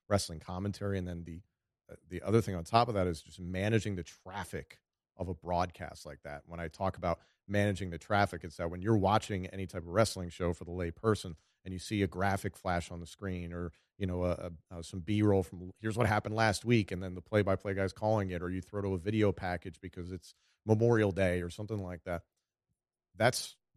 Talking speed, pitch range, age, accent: 225 wpm, 90-105 Hz, 40-59, American